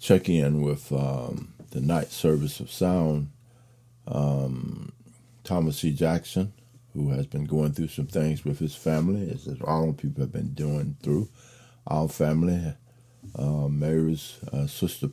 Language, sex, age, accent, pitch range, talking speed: English, male, 50-69, American, 80-120 Hz, 145 wpm